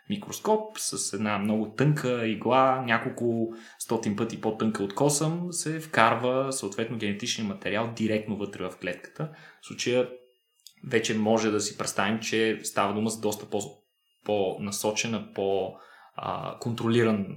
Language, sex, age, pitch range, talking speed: Bulgarian, male, 20-39, 110-165 Hz, 130 wpm